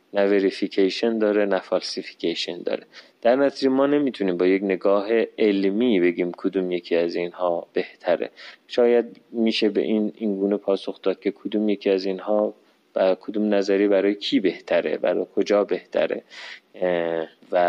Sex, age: male, 30-49